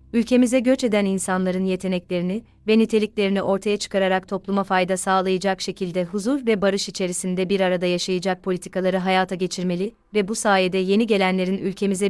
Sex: female